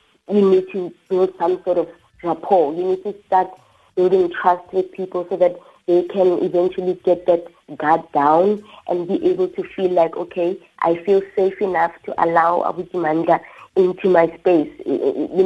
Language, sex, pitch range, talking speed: English, female, 170-190 Hz, 170 wpm